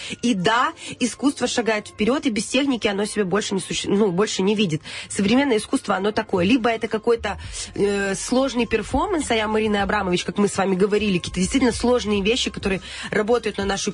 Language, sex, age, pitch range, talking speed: Russian, female, 20-39, 195-245 Hz, 170 wpm